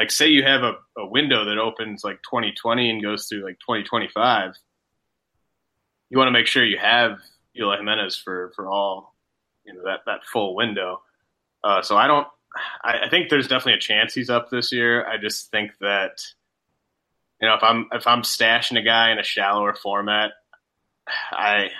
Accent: American